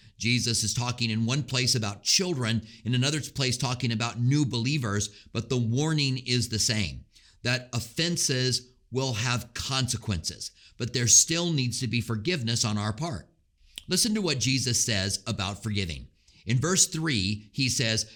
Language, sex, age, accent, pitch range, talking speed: English, male, 50-69, American, 110-155 Hz, 160 wpm